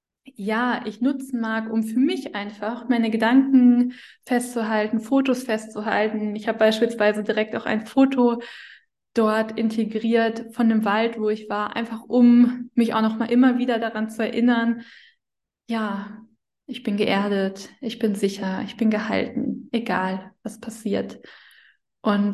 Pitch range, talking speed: 215-245 Hz, 140 wpm